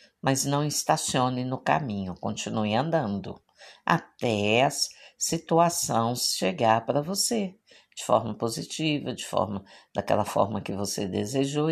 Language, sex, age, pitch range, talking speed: Portuguese, female, 50-69, 110-170 Hz, 120 wpm